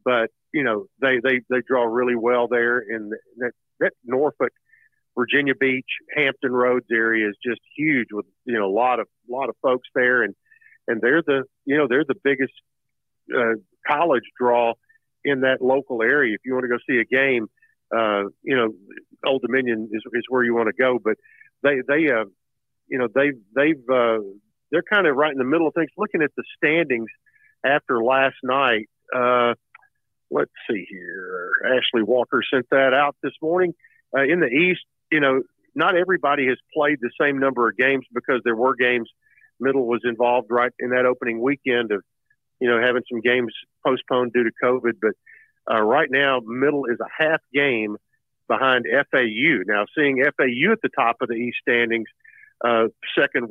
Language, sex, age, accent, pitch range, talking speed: English, male, 50-69, American, 120-145 Hz, 185 wpm